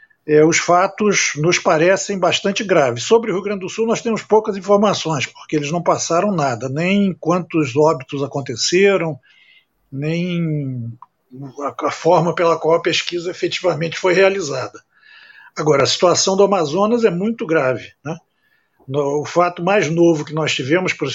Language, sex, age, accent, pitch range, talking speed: Portuguese, male, 60-79, Brazilian, 160-215 Hz, 160 wpm